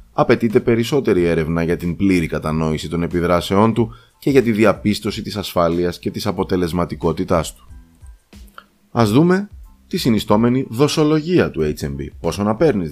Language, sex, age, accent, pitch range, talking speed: Greek, male, 20-39, native, 85-115 Hz, 140 wpm